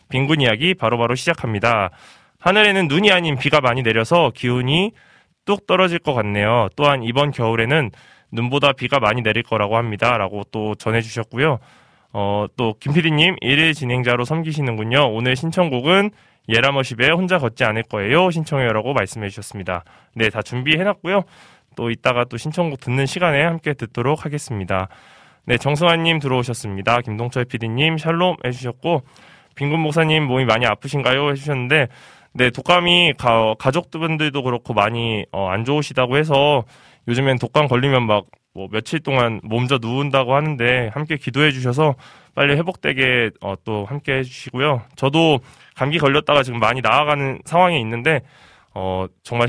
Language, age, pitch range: Korean, 20-39, 115-150 Hz